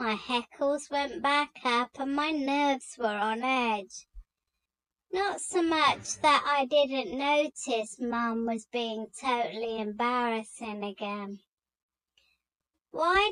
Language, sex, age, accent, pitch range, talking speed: English, male, 30-49, British, 230-290 Hz, 115 wpm